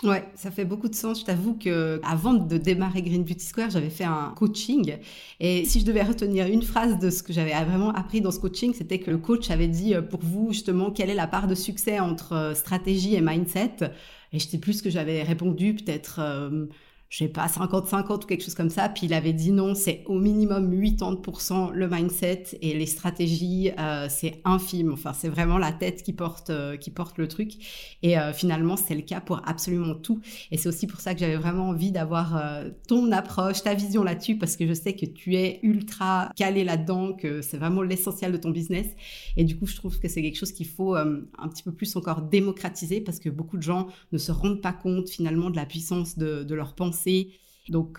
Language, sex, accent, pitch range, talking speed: French, female, French, 165-195 Hz, 225 wpm